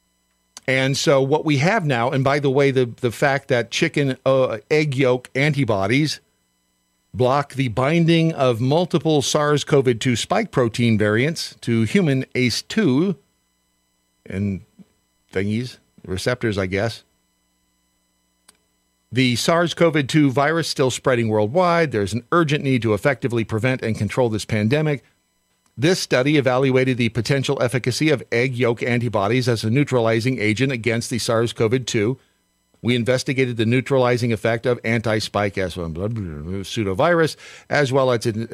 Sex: male